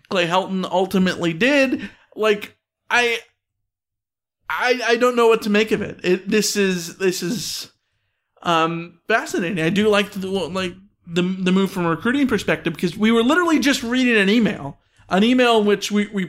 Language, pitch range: English, 180-225 Hz